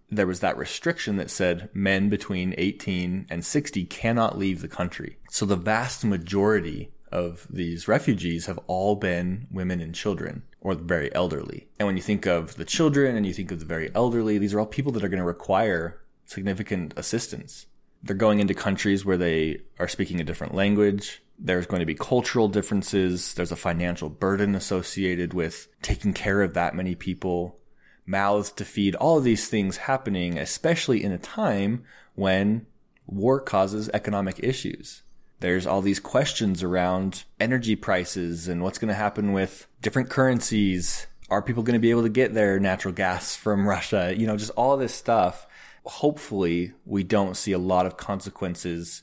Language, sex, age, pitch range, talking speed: English, male, 20-39, 90-105 Hz, 175 wpm